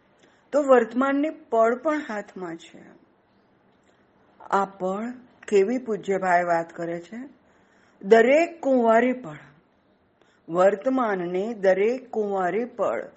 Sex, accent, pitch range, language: female, native, 185-255 Hz, Gujarati